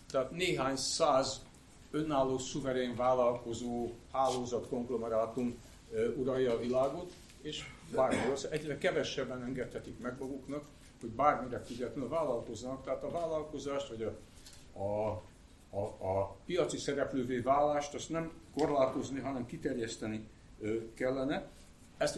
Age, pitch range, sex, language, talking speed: 60-79, 115-140 Hz, male, Hungarian, 110 wpm